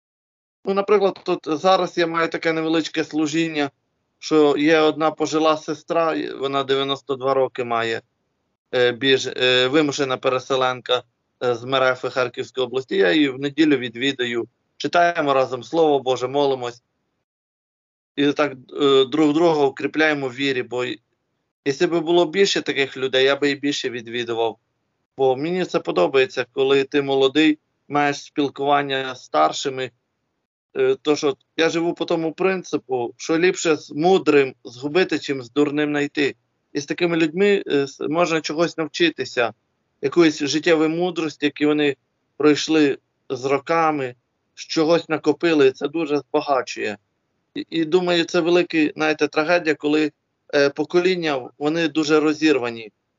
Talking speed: 125 wpm